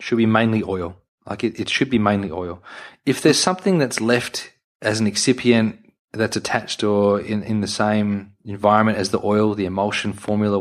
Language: English